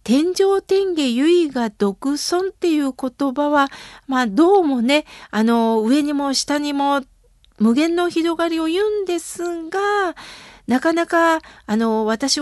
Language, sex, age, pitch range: Japanese, female, 50-69, 215-320 Hz